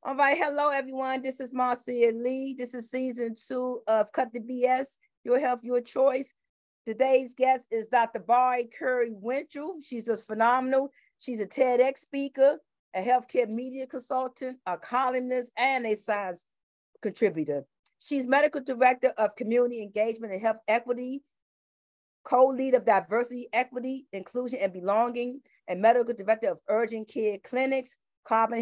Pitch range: 220-265 Hz